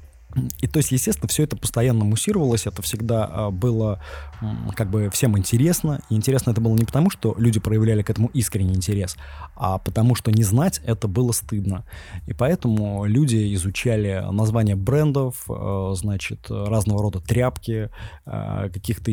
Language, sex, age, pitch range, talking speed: Russian, male, 20-39, 100-120 Hz, 145 wpm